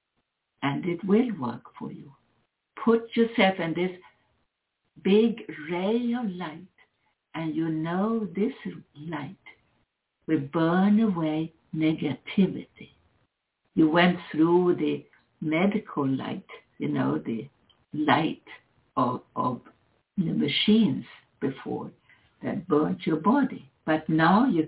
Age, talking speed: 60-79, 110 wpm